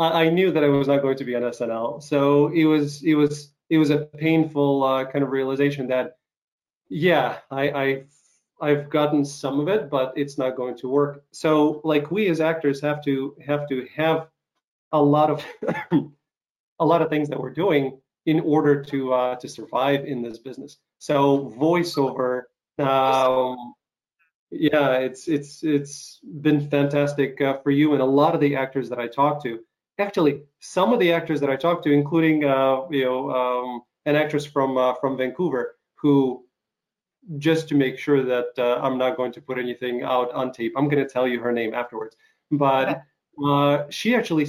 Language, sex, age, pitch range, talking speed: English, male, 30-49, 130-150 Hz, 185 wpm